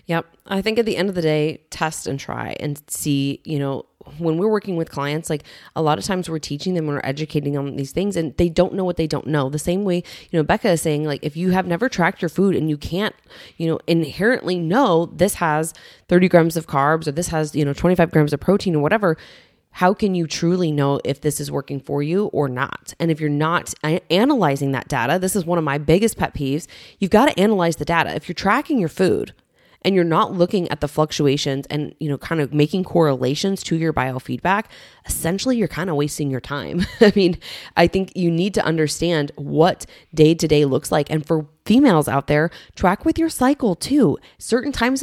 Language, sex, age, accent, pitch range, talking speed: English, female, 20-39, American, 150-195 Hz, 225 wpm